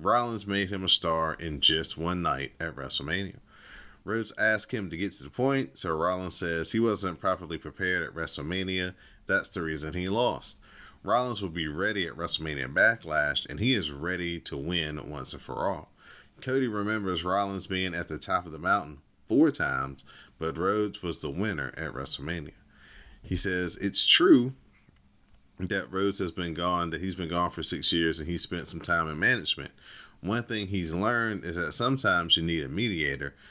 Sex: male